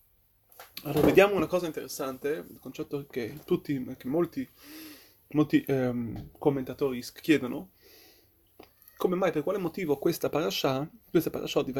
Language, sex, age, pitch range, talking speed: Italian, male, 20-39, 135-180 Hz, 120 wpm